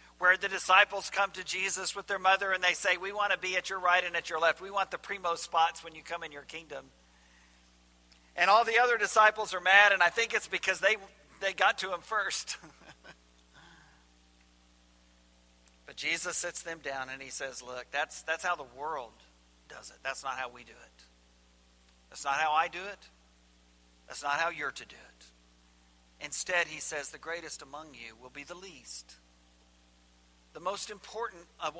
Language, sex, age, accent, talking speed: English, male, 50-69, American, 190 wpm